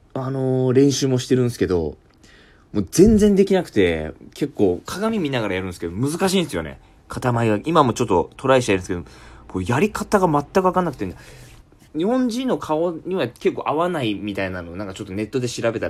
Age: 20-39